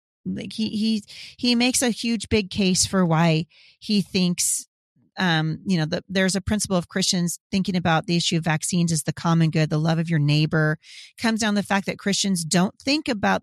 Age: 40-59